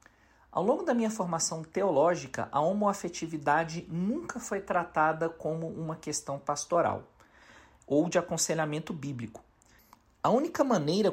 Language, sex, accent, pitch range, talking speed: Portuguese, male, Brazilian, 125-170 Hz, 120 wpm